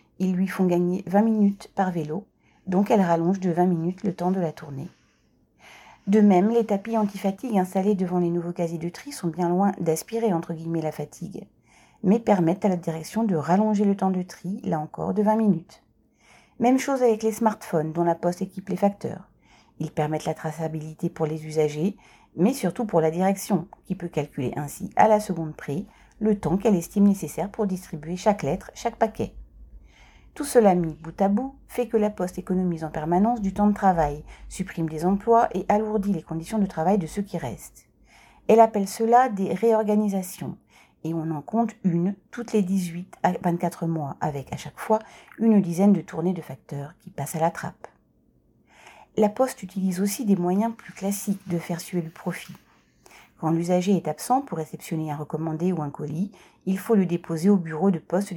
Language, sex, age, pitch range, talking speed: French, female, 40-59, 165-205 Hz, 195 wpm